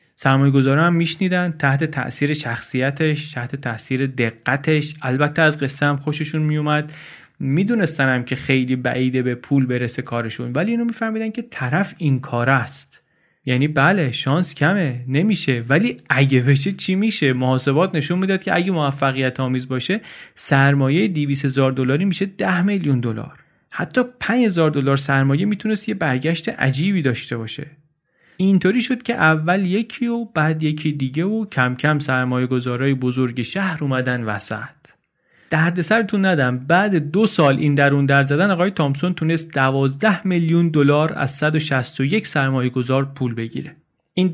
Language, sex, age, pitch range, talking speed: Persian, male, 30-49, 130-175 Hz, 145 wpm